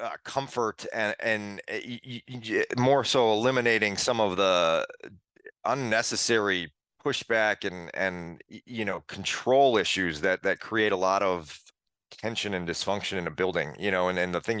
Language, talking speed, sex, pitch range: English, 165 wpm, male, 100-125 Hz